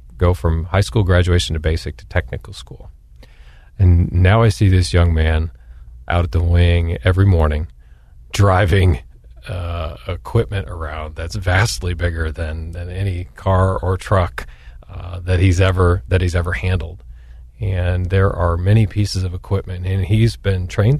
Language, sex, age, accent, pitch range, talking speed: English, male, 40-59, American, 80-95 Hz, 155 wpm